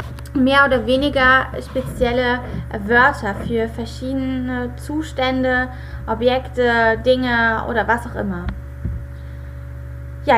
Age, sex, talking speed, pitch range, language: 20-39, female, 85 wpm, 190-255 Hz, German